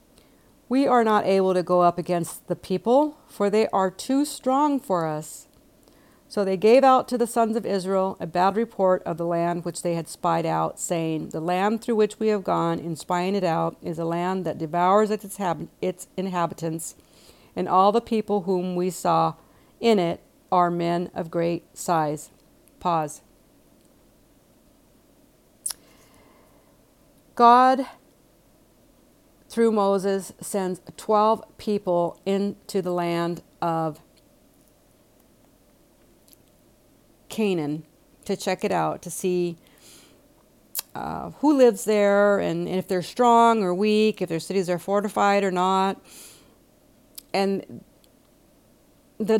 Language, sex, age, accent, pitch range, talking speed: English, female, 50-69, American, 170-215 Hz, 130 wpm